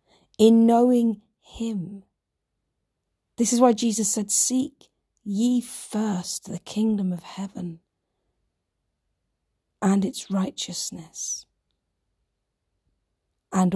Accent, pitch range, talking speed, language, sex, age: British, 180-235 Hz, 85 wpm, English, female, 40-59